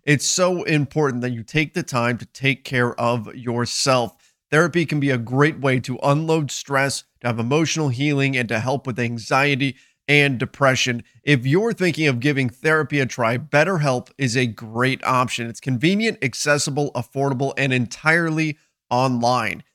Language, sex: English, male